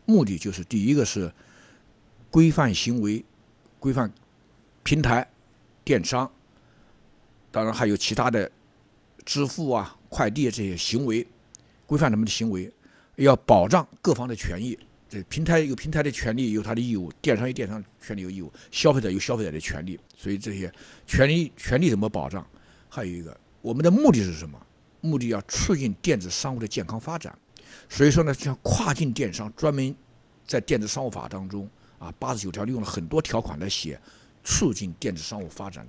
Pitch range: 95-120 Hz